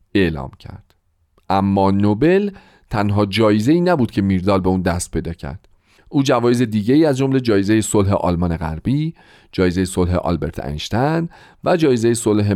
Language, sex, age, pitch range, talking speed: Persian, male, 40-59, 95-140 Hz, 150 wpm